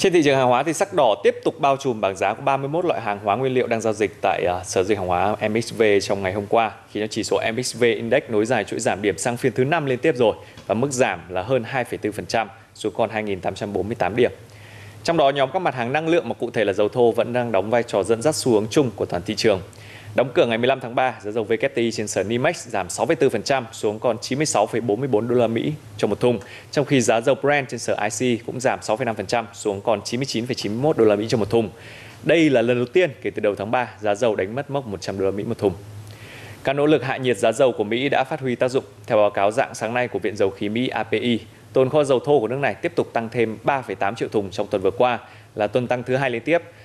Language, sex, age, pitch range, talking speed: Vietnamese, male, 20-39, 105-130 Hz, 265 wpm